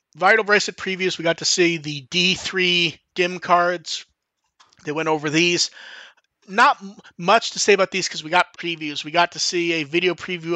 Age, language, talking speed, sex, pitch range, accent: 30-49, English, 190 wpm, male, 165-210 Hz, American